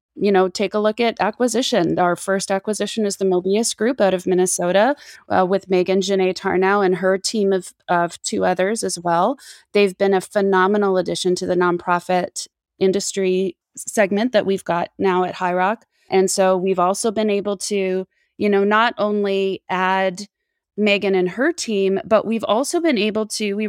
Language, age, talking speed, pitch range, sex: English, 20-39, 180 wpm, 185-210 Hz, female